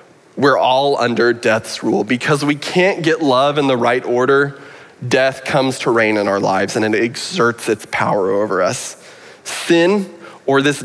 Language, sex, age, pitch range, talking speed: English, male, 20-39, 115-155 Hz, 170 wpm